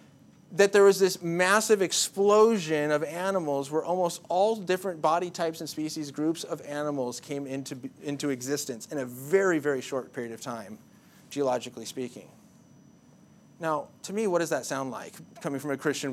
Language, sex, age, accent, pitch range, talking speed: English, male, 30-49, American, 140-195 Hz, 165 wpm